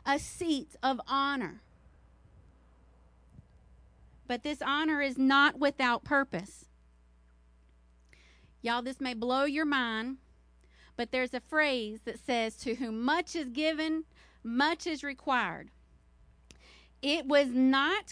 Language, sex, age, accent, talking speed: English, female, 40-59, American, 115 wpm